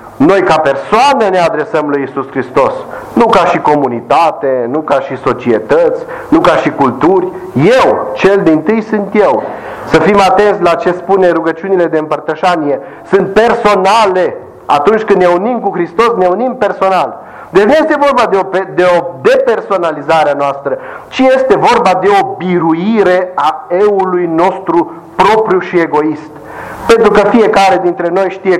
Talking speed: 155 wpm